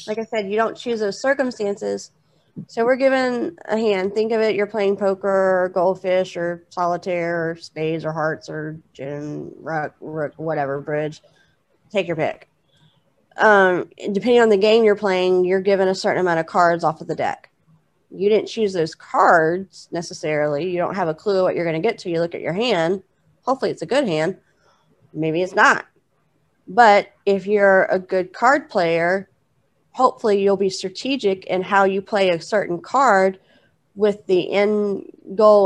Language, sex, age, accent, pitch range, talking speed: English, female, 30-49, American, 170-215 Hz, 180 wpm